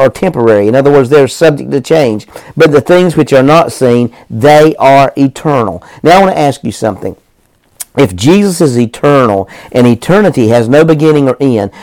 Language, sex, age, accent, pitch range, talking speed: English, male, 50-69, American, 130-160 Hz, 190 wpm